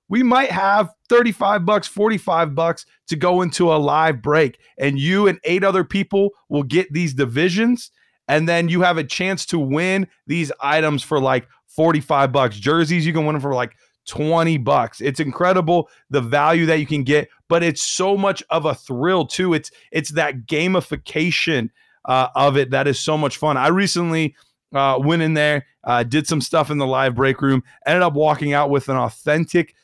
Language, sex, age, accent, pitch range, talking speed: English, male, 30-49, American, 135-170 Hz, 195 wpm